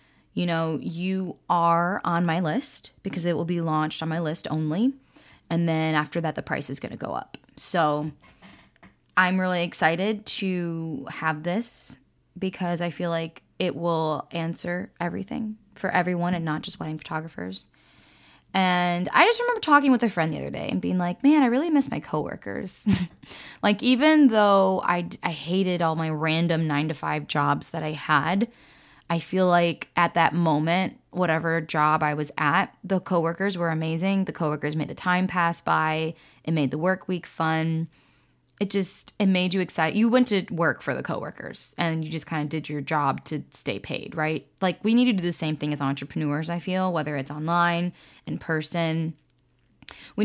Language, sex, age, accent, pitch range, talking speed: English, female, 10-29, American, 155-185 Hz, 185 wpm